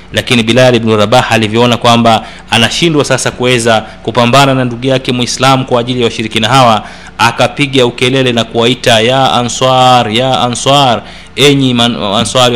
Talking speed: 140 wpm